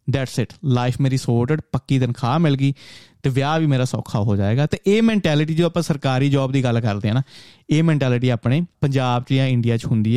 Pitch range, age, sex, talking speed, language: 120-160 Hz, 30-49, male, 220 wpm, Punjabi